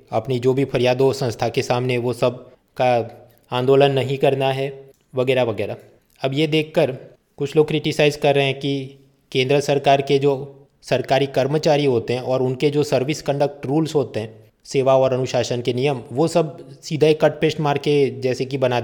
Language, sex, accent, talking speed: Hindi, male, native, 185 wpm